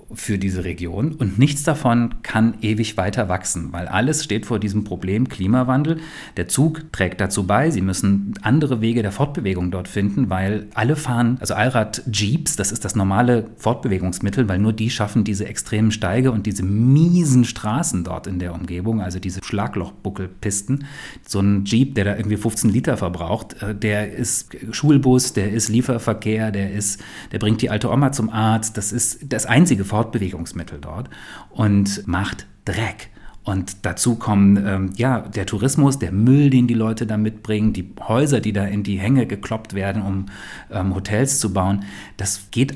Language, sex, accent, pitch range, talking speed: German, male, German, 100-125 Hz, 170 wpm